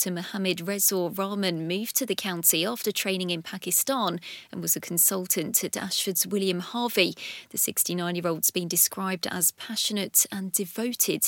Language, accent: English, British